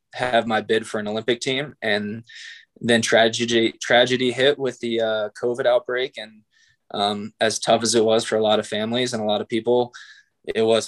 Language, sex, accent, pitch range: English, male, American, 105-120 Hz